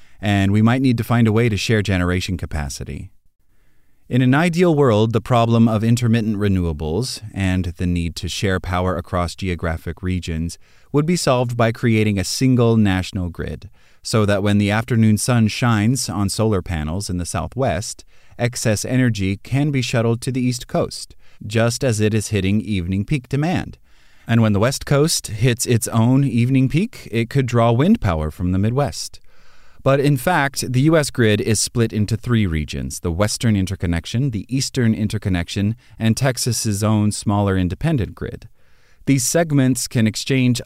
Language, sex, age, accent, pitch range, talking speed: English, male, 30-49, American, 90-125 Hz, 170 wpm